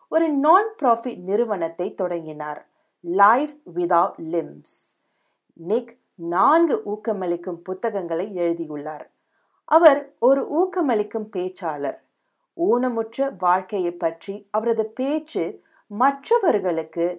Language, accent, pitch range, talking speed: Tamil, native, 175-290 Hz, 50 wpm